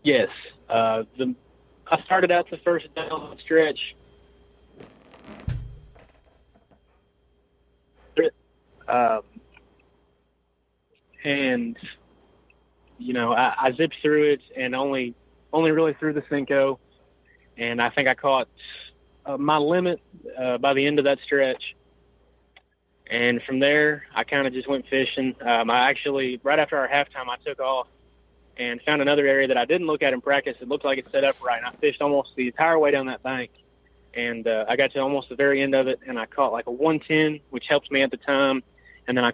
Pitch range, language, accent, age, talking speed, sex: 125-145 Hz, English, American, 30-49, 175 wpm, male